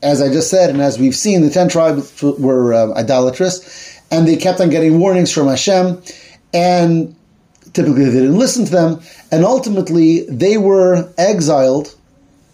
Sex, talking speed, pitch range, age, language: male, 165 wpm, 135-175 Hz, 30-49, English